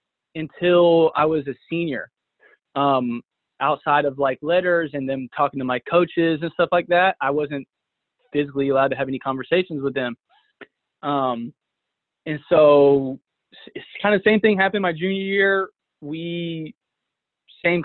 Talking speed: 150 wpm